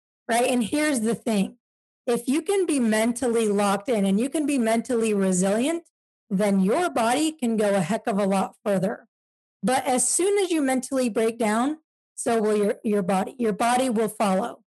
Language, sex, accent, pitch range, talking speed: English, female, American, 210-250 Hz, 185 wpm